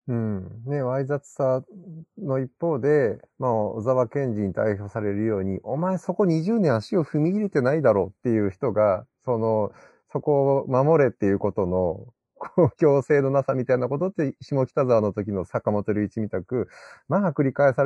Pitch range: 110-165 Hz